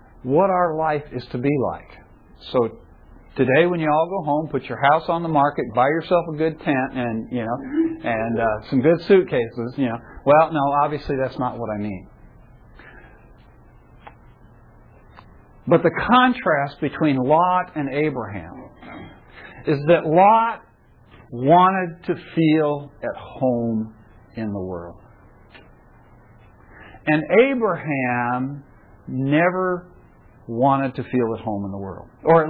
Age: 50-69